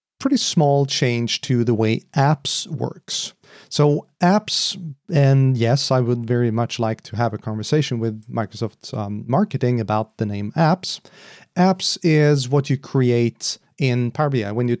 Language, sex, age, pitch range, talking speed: English, male, 30-49, 120-145 Hz, 160 wpm